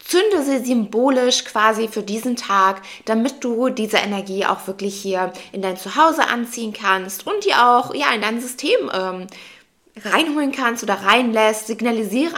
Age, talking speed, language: 20-39, 155 wpm, German